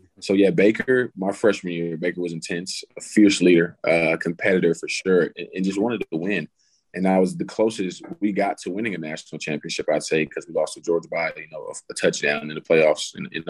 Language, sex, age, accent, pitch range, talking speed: English, male, 20-39, American, 80-100 Hz, 225 wpm